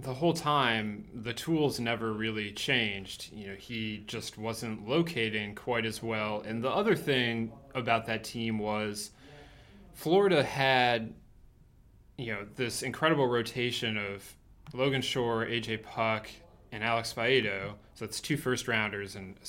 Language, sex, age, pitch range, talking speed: English, male, 20-39, 110-135 Hz, 145 wpm